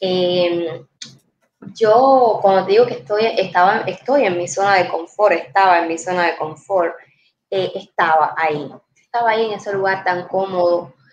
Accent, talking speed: American, 160 wpm